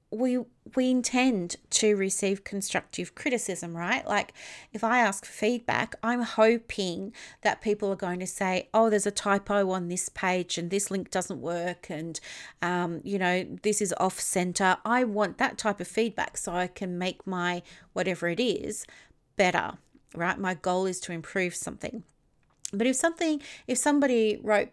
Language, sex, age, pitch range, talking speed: English, female, 40-59, 180-215 Hz, 165 wpm